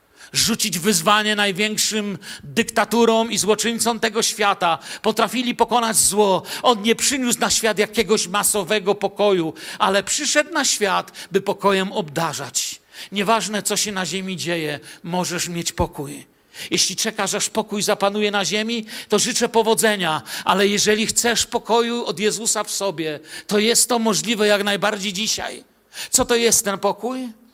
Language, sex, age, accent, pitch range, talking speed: Polish, male, 50-69, native, 205-255 Hz, 140 wpm